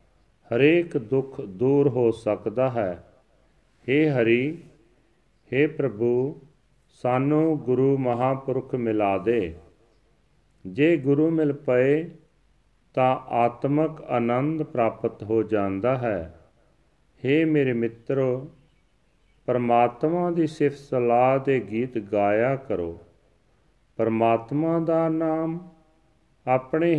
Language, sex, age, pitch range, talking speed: Punjabi, male, 40-59, 120-150 Hz, 90 wpm